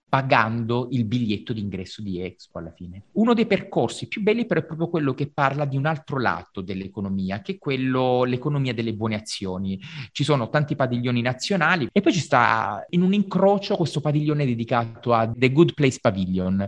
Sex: male